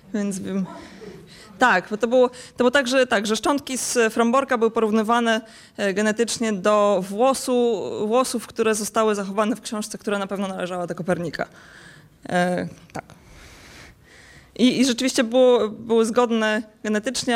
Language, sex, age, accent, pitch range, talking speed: Polish, female, 20-39, native, 195-235 Hz, 145 wpm